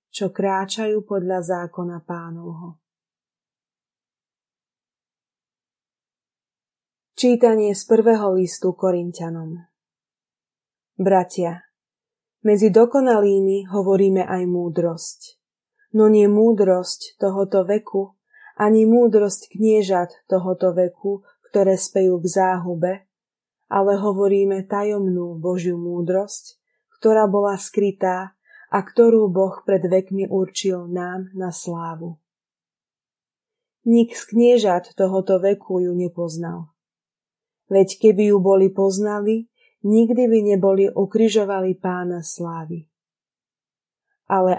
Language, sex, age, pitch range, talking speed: Slovak, female, 20-39, 180-210 Hz, 90 wpm